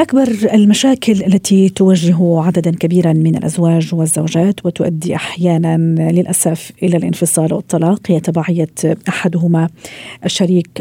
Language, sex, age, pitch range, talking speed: Arabic, female, 40-59, 165-195 Hz, 105 wpm